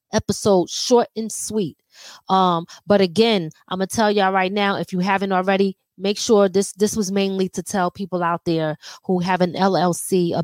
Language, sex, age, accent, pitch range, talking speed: English, female, 20-39, American, 175-215 Hz, 190 wpm